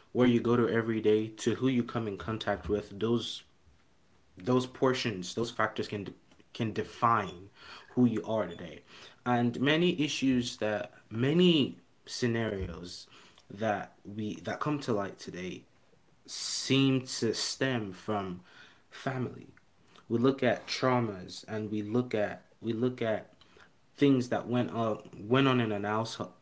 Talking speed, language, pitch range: 145 wpm, English, 95-125 Hz